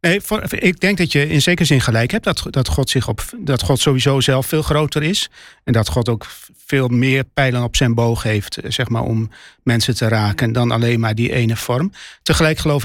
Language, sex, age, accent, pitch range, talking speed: Dutch, male, 40-59, Dutch, 120-145 Hz, 220 wpm